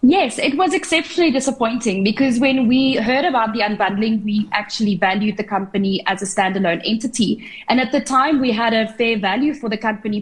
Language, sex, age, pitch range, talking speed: English, female, 20-39, 205-265 Hz, 195 wpm